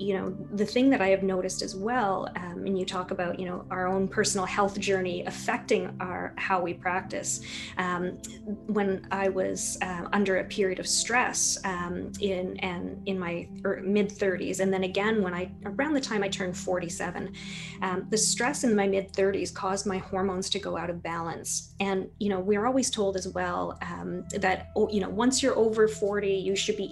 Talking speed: 200 wpm